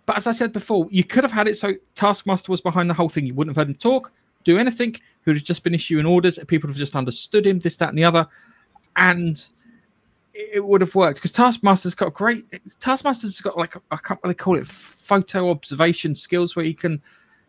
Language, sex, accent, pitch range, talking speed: English, male, British, 155-210 Hz, 230 wpm